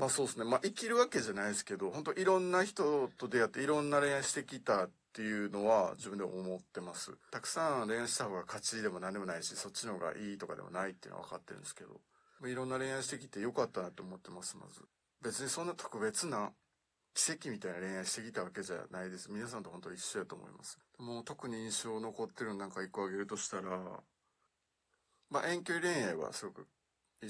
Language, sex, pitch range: Japanese, male, 100-140 Hz